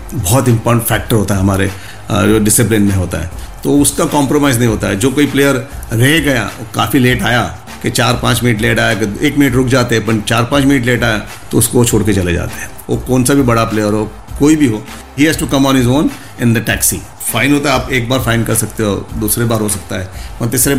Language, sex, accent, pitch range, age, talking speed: Hindi, male, native, 110-135 Hz, 50-69, 240 wpm